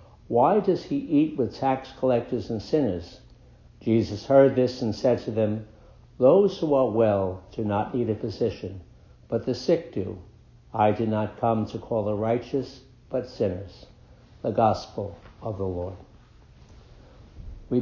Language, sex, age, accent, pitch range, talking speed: English, male, 60-79, American, 105-130 Hz, 150 wpm